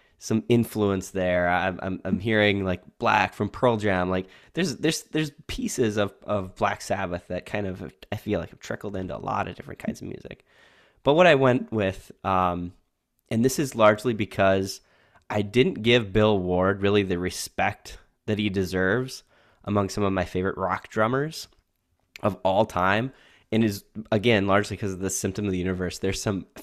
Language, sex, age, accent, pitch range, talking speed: English, male, 20-39, American, 90-110 Hz, 185 wpm